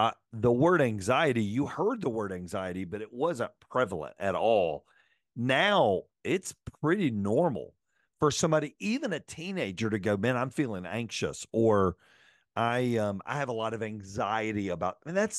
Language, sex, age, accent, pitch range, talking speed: English, male, 50-69, American, 110-145 Hz, 165 wpm